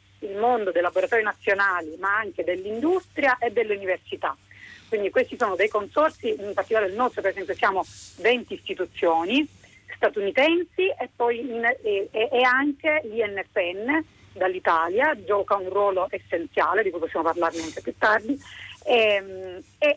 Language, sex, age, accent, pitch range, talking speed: Italian, female, 40-59, native, 190-255 Hz, 140 wpm